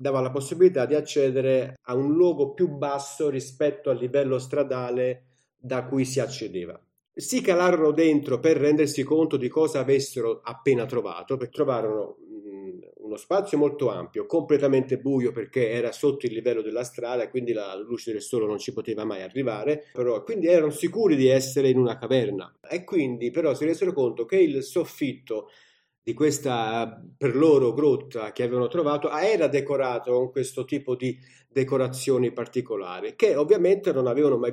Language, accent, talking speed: Italian, native, 165 wpm